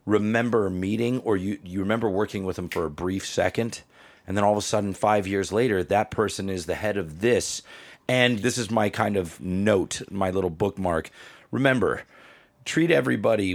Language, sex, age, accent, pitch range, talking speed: English, male, 30-49, American, 90-115 Hz, 185 wpm